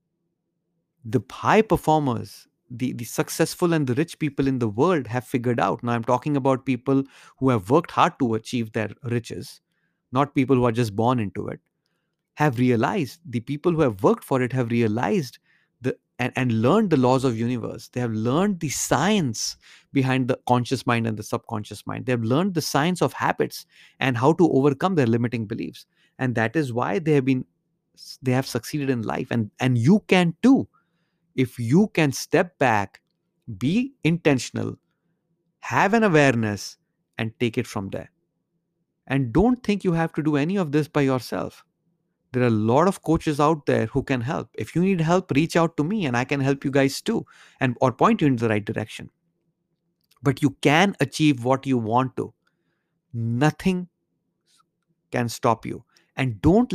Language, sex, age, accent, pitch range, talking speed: English, male, 30-49, Indian, 125-170 Hz, 185 wpm